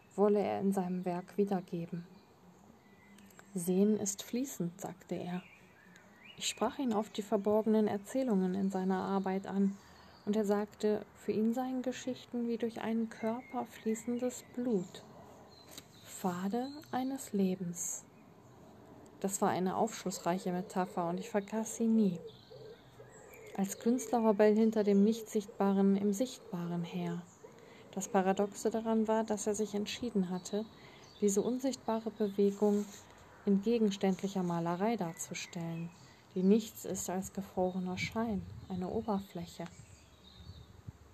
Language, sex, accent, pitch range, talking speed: German, female, German, 185-225 Hz, 120 wpm